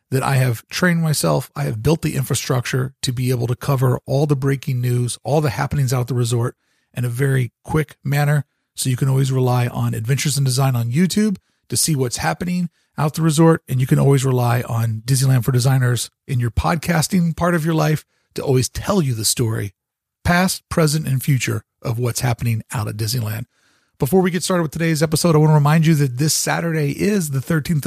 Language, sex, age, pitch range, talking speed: English, male, 40-59, 130-165 Hz, 215 wpm